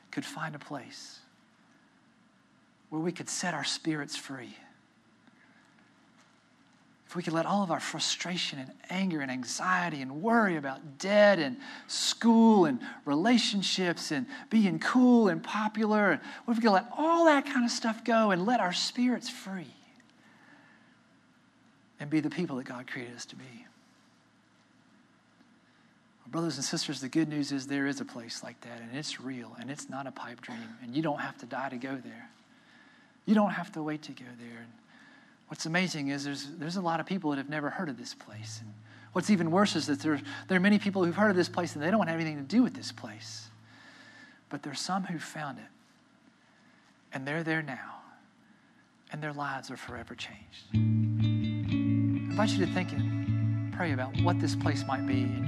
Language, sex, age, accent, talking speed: English, male, 40-59, American, 185 wpm